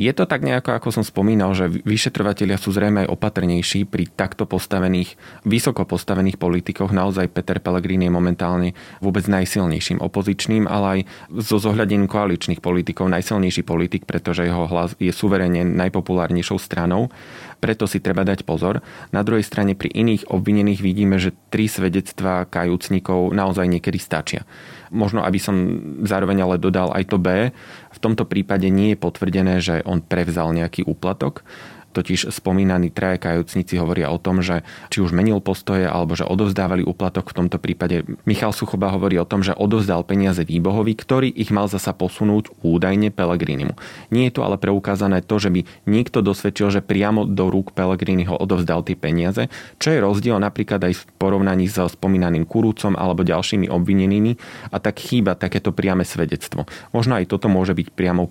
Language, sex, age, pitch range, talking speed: Slovak, male, 30-49, 90-100 Hz, 165 wpm